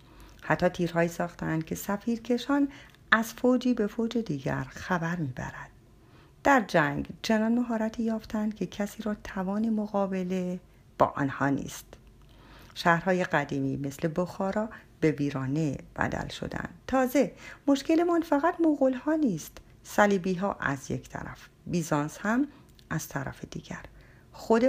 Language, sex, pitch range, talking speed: Persian, female, 150-235 Hz, 120 wpm